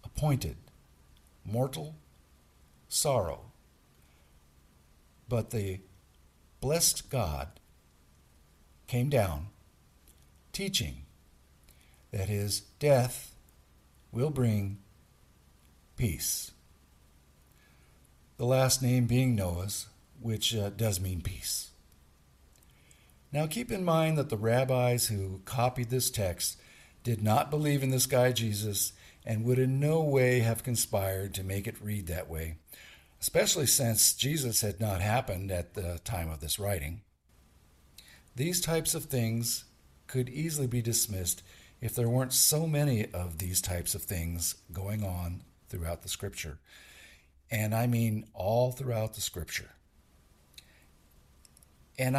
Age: 60-79